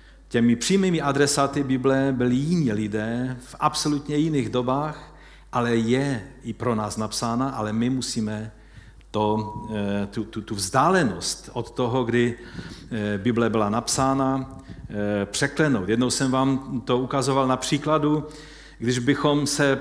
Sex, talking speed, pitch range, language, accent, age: male, 125 wpm, 115-145 Hz, Czech, native, 50-69